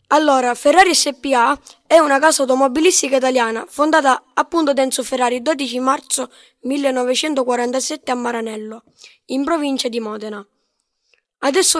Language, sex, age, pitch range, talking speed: Italian, female, 20-39, 245-285 Hz, 115 wpm